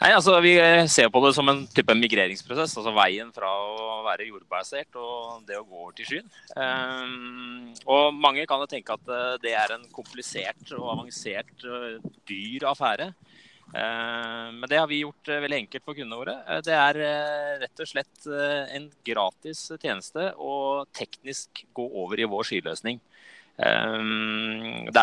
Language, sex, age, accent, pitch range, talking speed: English, male, 20-39, Norwegian, 105-140 Hz, 155 wpm